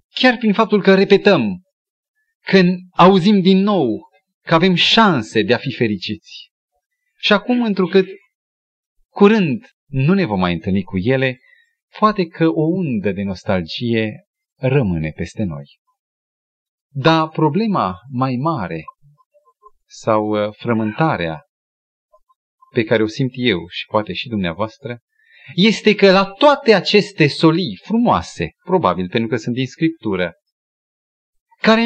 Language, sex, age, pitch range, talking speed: Romanian, male, 30-49, 135-230 Hz, 120 wpm